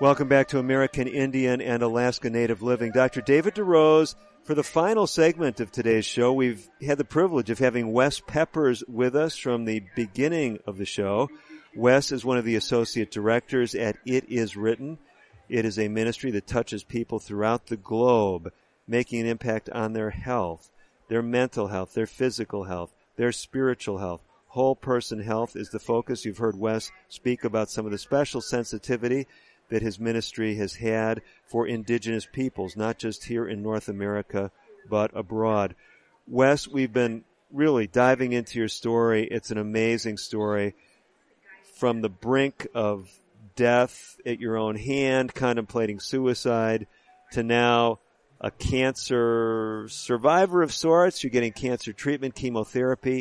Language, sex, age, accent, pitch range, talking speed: English, male, 50-69, American, 110-130 Hz, 155 wpm